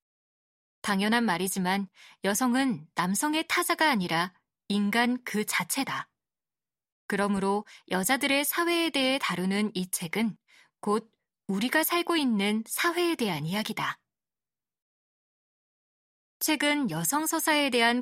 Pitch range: 195-255 Hz